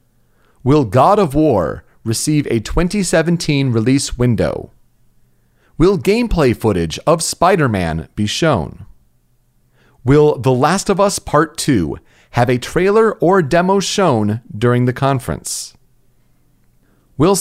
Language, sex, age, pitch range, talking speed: English, male, 40-59, 105-175 Hz, 115 wpm